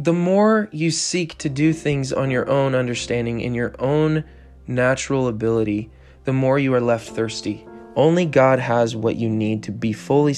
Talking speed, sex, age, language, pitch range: 180 wpm, male, 20-39, English, 115-155 Hz